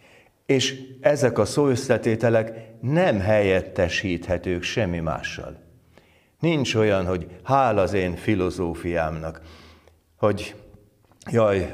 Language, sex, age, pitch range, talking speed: Hungarian, male, 60-79, 85-105 Hz, 85 wpm